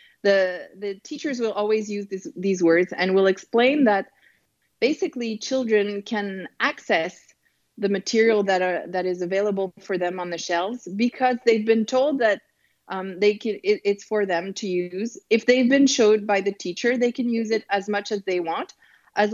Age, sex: 30-49, female